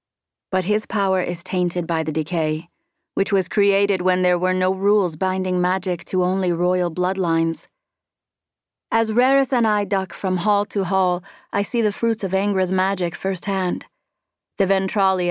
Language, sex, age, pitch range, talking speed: English, female, 30-49, 170-200 Hz, 160 wpm